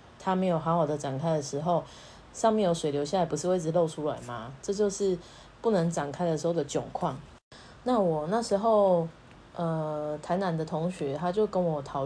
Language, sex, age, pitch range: Chinese, female, 20-39, 150-190 Hz